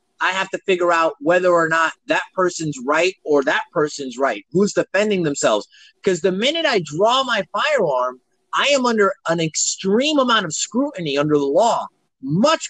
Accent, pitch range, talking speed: American, 160-230 Hz, 175 wpm